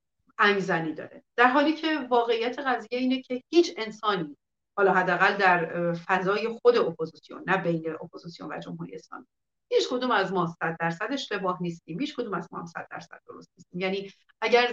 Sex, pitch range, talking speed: female, 165-210 Hz, 175 wpm